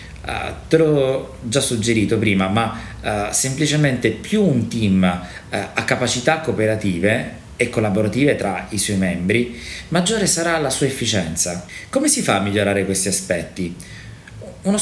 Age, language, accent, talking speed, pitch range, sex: 30-49, Italian, native, 130 wpm, 95-130 Hz, male